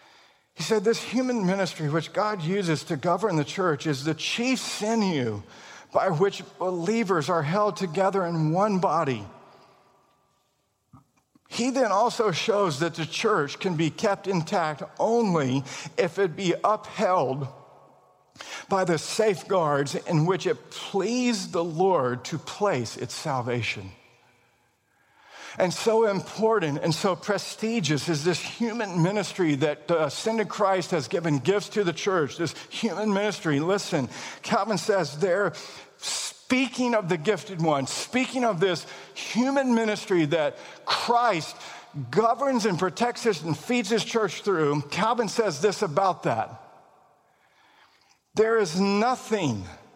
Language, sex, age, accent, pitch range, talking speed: English, male, 50-69, American, 155-215 Hz, 135 wpm